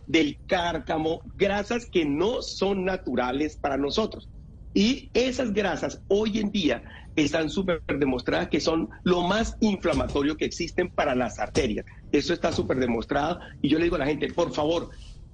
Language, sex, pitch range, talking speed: Spanish, male, 140-200 Hz, 160 wpm